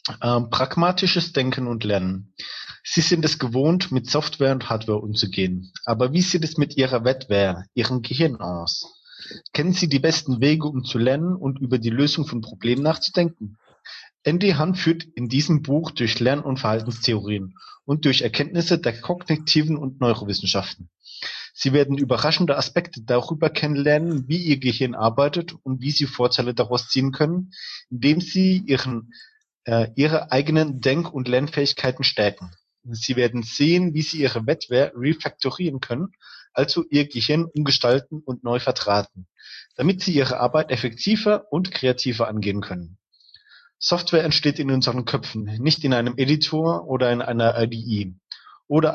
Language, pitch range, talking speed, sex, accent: German, 120-155 Hz, 150 wpm, male, German